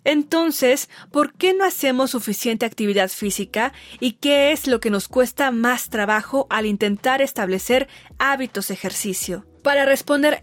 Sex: female